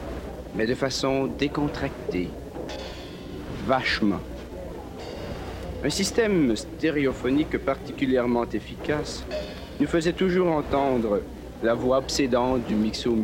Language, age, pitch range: English, 50-69, 110-150 Hz